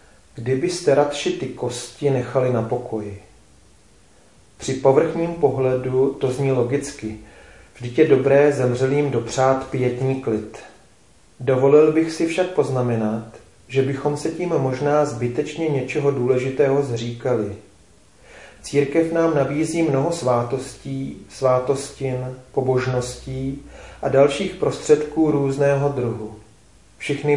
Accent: native